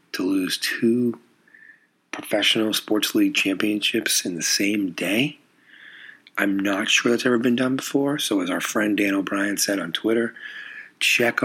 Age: 40-59